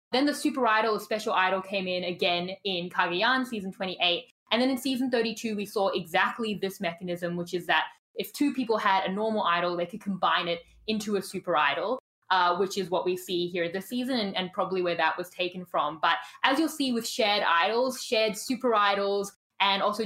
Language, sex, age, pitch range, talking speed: English, female, 10-29, 185-230 Hz, 210 wpm